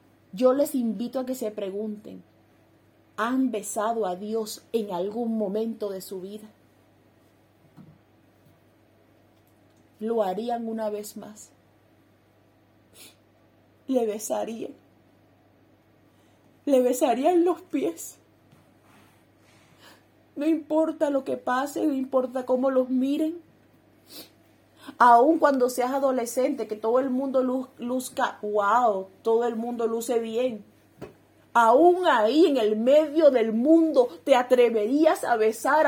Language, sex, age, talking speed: English, female, 30-49, 105 wpm